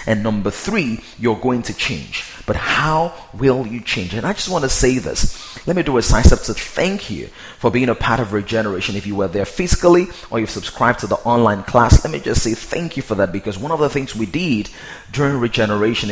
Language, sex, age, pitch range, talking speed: English, male, 30-49, 105-125 Hz, 230 wpm